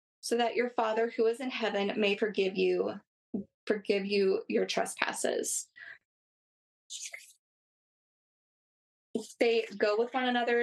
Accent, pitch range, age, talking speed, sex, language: American, 205-235 Hz, 20-39, 115 wpm, female, English